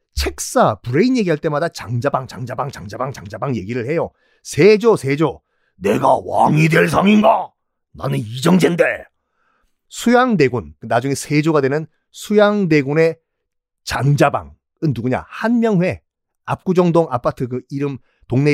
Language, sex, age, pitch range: Korean, male, 40-59, 125-190 Hz